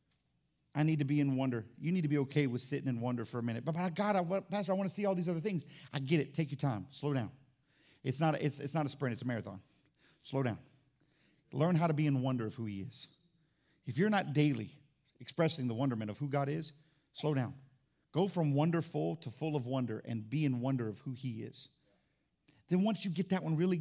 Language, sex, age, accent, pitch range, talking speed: English, male, 50-69, American, 130-180 Hz, 235 wpm